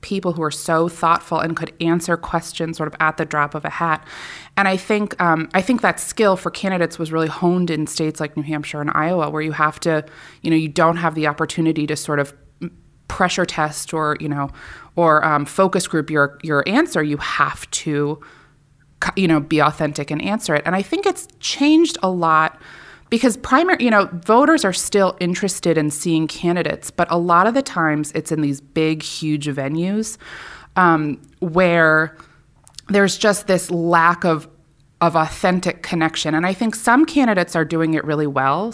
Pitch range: 150-180 Hz